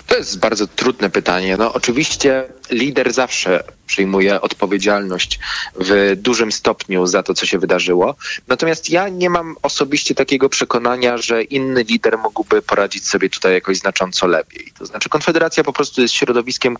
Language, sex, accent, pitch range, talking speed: Polish, male, native, 100-135 Hz, 155 wpm